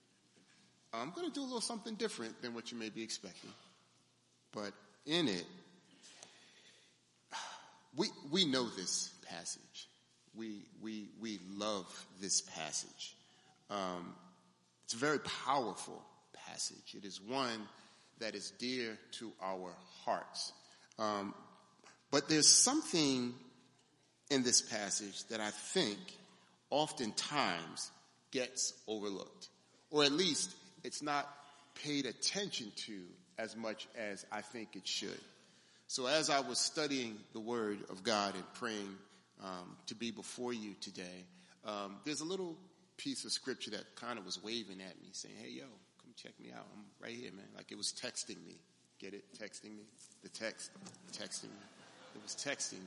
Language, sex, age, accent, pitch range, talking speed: English, male, 40-59, American, 100-140 Hz, 145 wpm